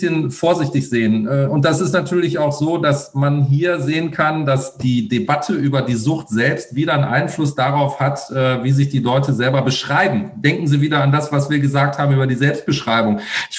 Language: German